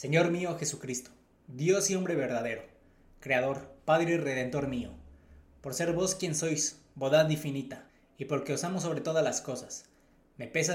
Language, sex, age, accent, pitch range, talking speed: Spanish, male, 20-39, Mexican, 135-175 Hz, 160 wpm